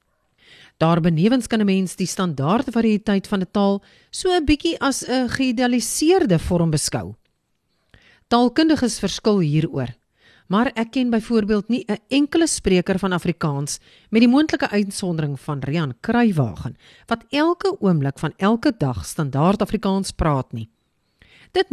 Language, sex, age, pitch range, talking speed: English, female, 40-59, 160-240 Hz, 140 wpm